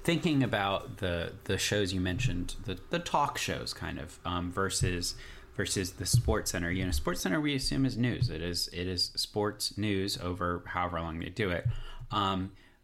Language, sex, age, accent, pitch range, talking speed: English, male, 30-49, American, 100-130 Hz, 185 wpm